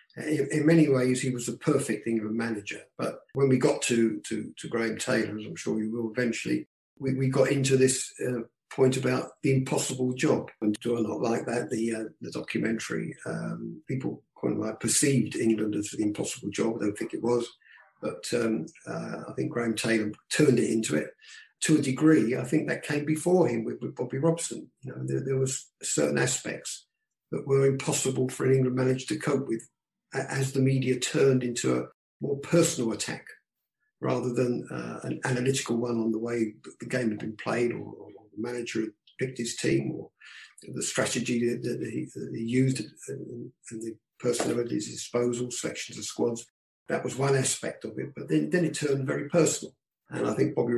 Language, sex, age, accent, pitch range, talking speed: English, male, 50-69, British, 115-135 Hz, 200 wpm